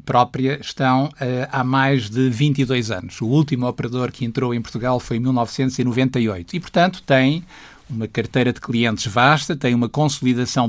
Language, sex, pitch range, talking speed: Portuguese, male, 120-140 Hz, 155 wpm